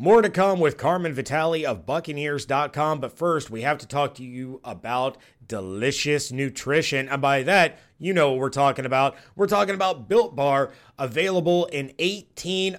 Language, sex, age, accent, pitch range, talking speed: English, male, 30-49, American, 130-165 Hz, 170 wpm